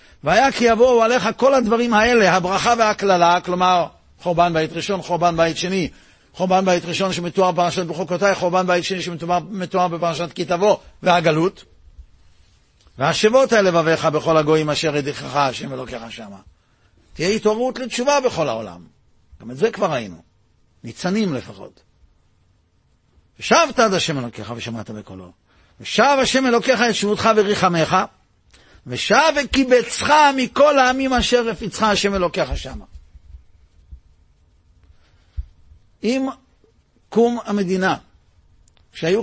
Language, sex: Hebrew, male